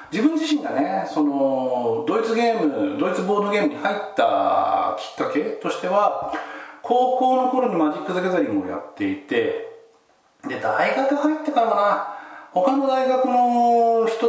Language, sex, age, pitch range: Japanese, male, 40-59, 180-275 Hz